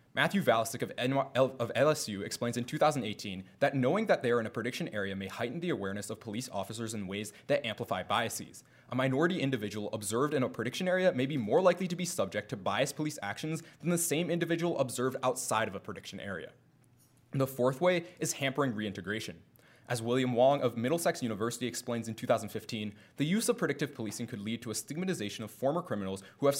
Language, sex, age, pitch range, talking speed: English, male, 20-39, 110-145 Hz, 195 wpm